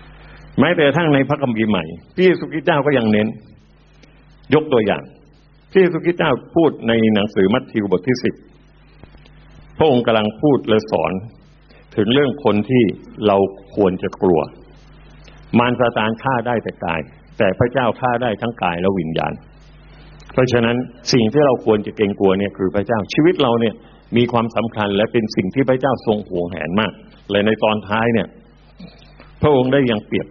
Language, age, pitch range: Thai, 60-79, 105-140 Hz